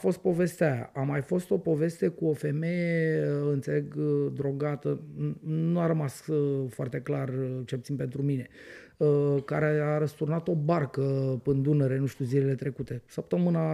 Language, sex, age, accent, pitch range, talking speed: Romanian, male, 30-49, native, 135-170 Hz, 175 wpm